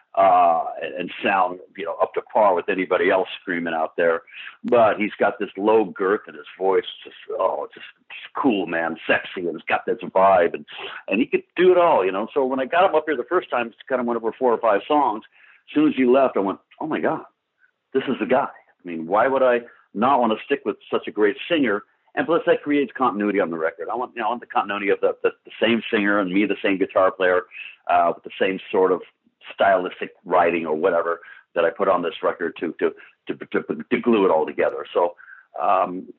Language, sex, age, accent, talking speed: English, male, 60-79, American, 245 wpm